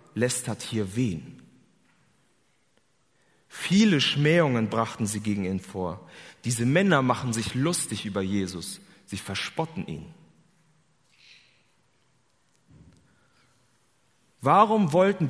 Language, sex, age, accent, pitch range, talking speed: German, male, 30-49, German, 115-175 Hz, 85 wpm